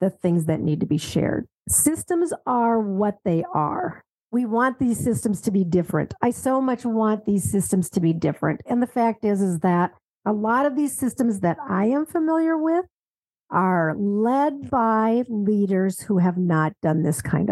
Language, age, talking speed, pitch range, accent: English, 50-69, 185 wpm, 175-240 Hz, American